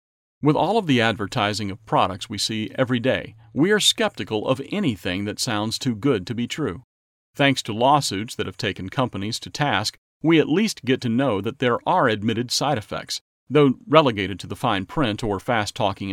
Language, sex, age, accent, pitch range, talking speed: English, male, 40-59, American, 105-140 Hz, 195 wpm